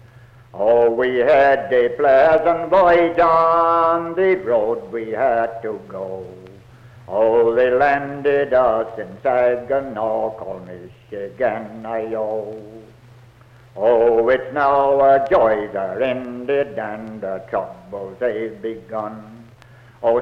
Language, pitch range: English, 110-140 Hz